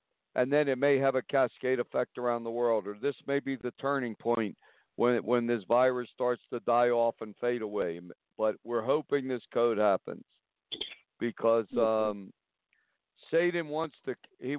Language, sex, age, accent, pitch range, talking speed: English, male, 60-79, American, 115-140 Hz, 170 wpm